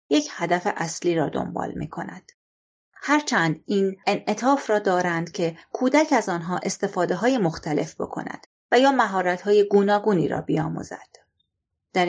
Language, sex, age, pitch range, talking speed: Persian, female, 30-49, 170-225 Hz, 130 wpm